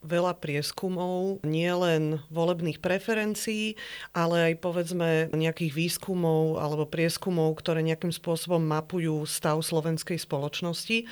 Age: 40-59